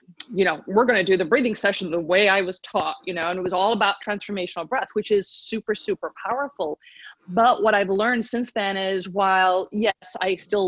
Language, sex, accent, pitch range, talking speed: English, female, American, 185-235 Hz, 220 wpm